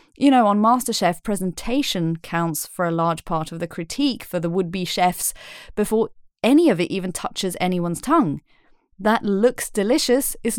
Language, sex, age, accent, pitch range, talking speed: English, female, 30-49, British, 180-250 Hz, 165 wpm